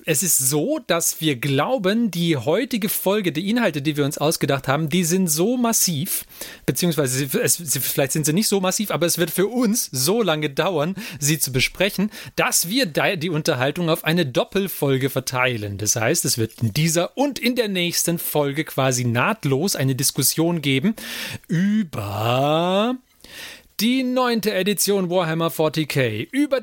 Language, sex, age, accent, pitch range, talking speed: German, male, 30-49, German, 145-195 Hz, 155 wpm